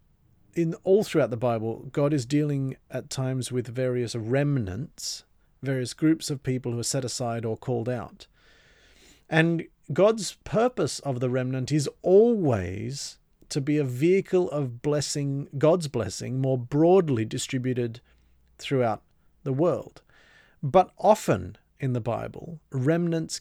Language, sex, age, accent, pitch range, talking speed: English, male, 40-59, Australian, 125-160 Hz, 135 wpm